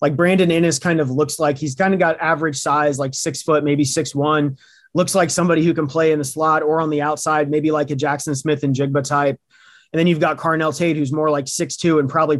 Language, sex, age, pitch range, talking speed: English, male, 30-49, 145-170 Hz, 255 wpm